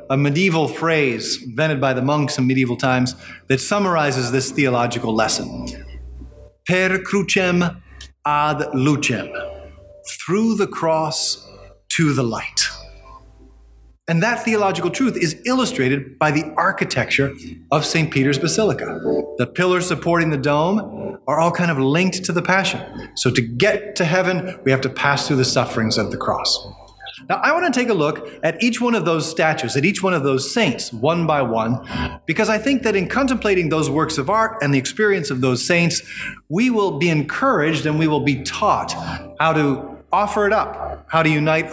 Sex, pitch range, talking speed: male, 130-180 Hz, 175 wpm